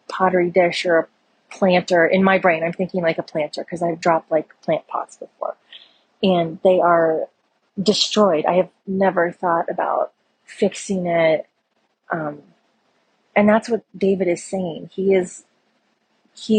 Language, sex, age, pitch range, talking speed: English, female, 30-49, 170-195 Hz, 150 wpm